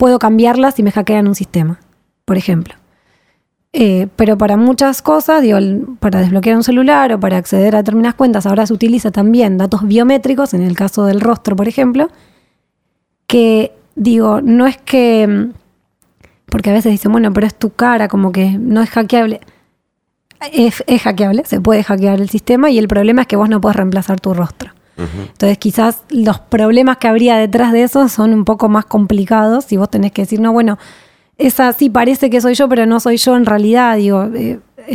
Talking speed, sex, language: 190 wpm, female, Spanish